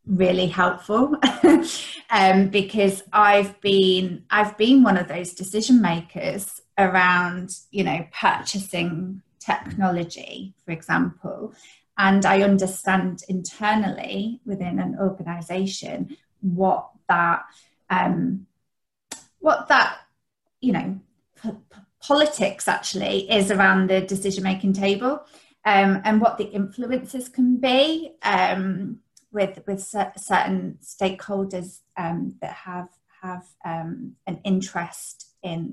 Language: English